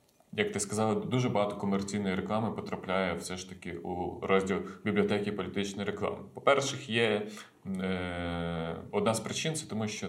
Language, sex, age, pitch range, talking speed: Ukrainian, male, 30-49, 95-110 Hz, 150 wpm